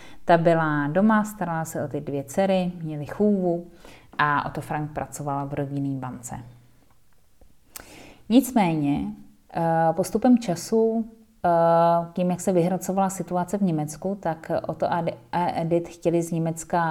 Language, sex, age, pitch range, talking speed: Czech, female, 30-49, 160-185 Hz, 135 wpm